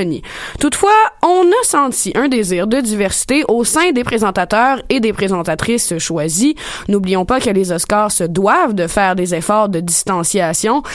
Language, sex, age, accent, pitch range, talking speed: French, female, 20-39, Canadian, 190-265 Hz, 160 wpm